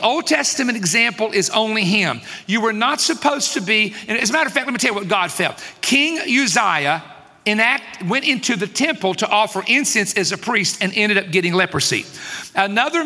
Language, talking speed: English, 200 wpm